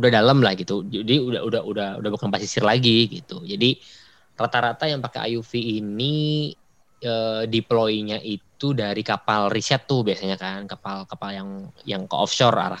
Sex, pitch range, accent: male, 100-125 Hz, native